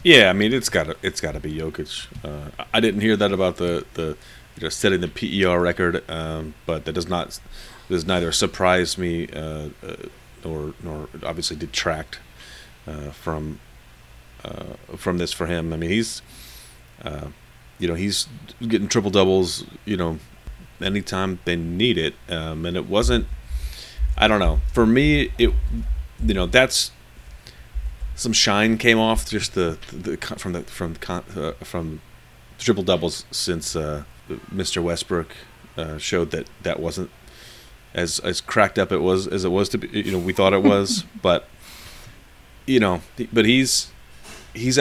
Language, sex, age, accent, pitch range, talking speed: English, male, 30-49, American, 75-105 Hz, 165 wpm